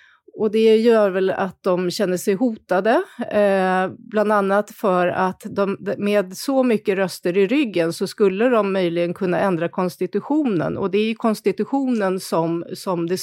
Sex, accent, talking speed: female, native, 165 wpm